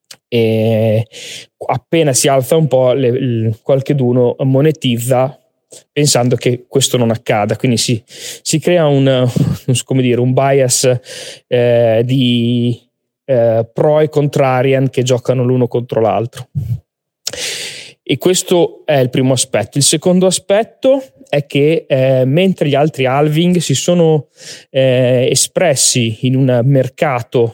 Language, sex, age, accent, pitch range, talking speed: Italian, male, 20-39, native, 120-145 Hz, 135 wpm